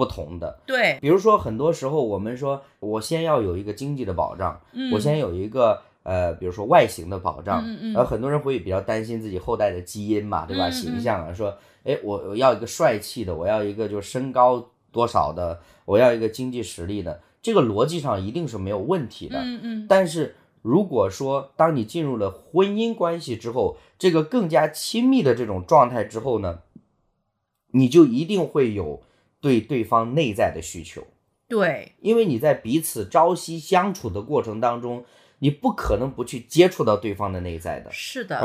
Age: 20-39